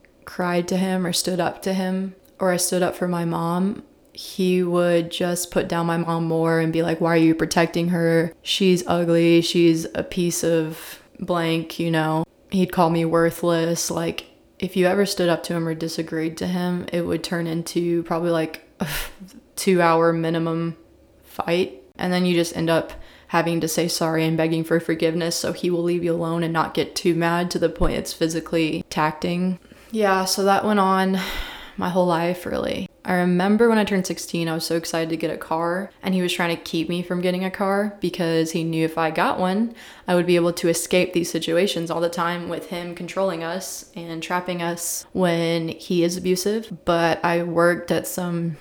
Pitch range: 165-180 Hz